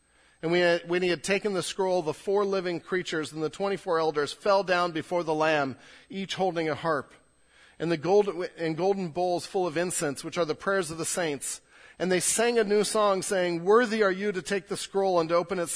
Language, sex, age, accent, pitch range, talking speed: English, male, 40-59, American, 150-185 Hz, 215 wpm